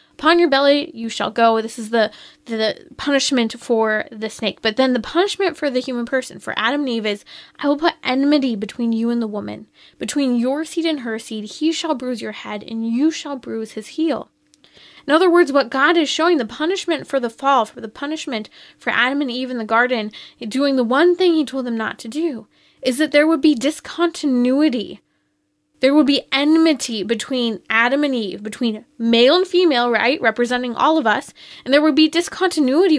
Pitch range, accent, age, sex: 230-305 Hz, American, 10-29, female